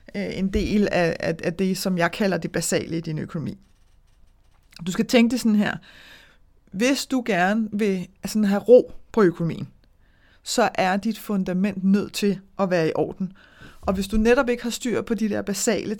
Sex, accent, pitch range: female, native, 180-225 Hz